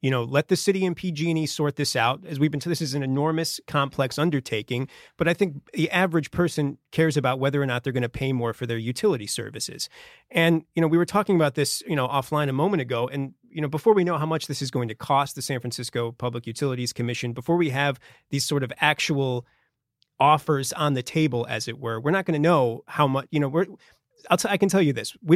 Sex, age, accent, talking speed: male, 30-49, American, 255 wpm